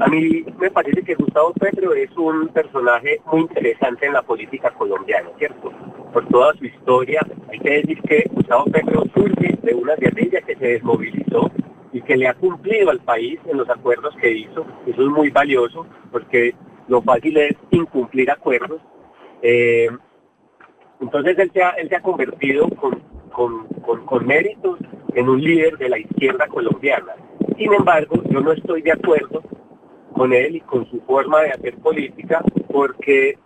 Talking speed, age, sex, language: 170 wpm, 40-59, male, Spanish